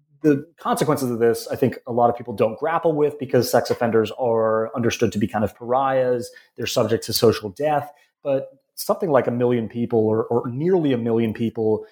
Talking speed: 200 wpm